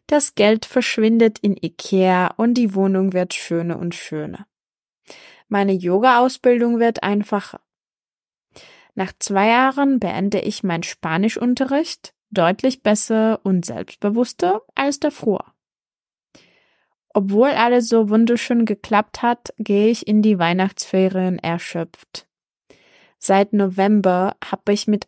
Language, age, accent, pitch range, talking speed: Czech, 20-39, German, 190-230 Hz, 110 wpm